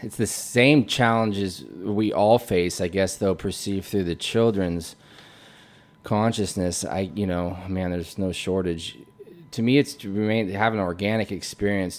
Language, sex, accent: English, male, American